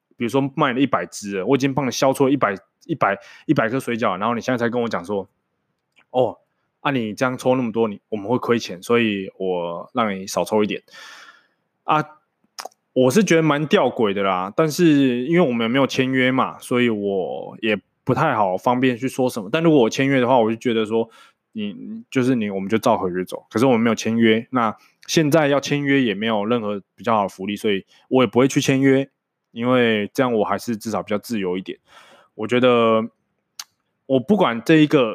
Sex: male